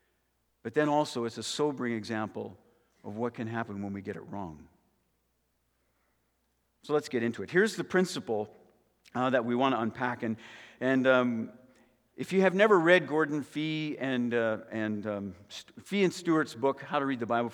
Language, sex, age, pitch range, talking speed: English, male, 50-69, 115-150 Hz, 180 wpm